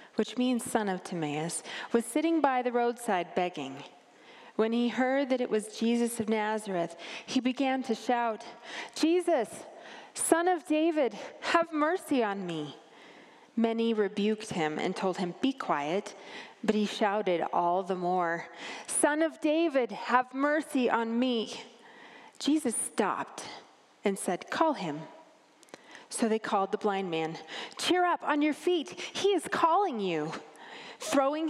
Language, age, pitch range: English, 30-49, 190-255 Hz